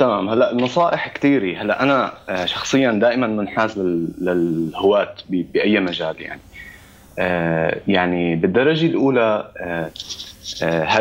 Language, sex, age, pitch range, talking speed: Arabic, male, 30-49, 85-115 Hz, 100 wpm